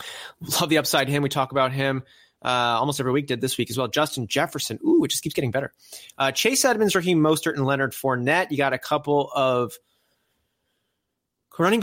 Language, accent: English, American